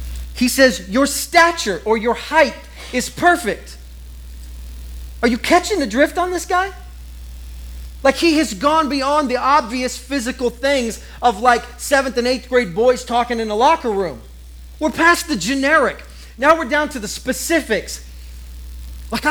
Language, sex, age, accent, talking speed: English, male, 40-59, American, 150 wpm